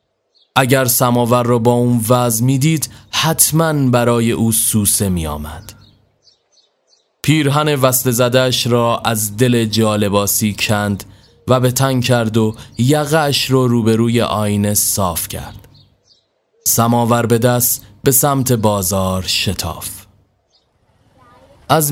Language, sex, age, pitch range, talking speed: Persian, male, 20-39, 105-135 Hz, 110 wpm